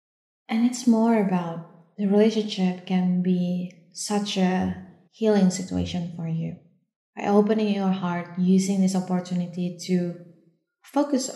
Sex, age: female, 20-39